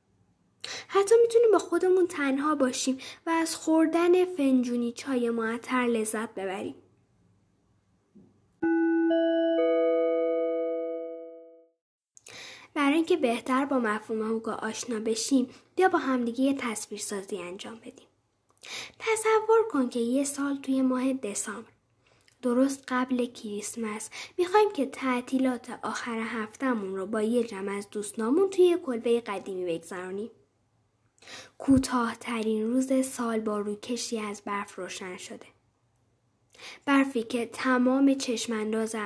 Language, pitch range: Persian, 210-270 Hz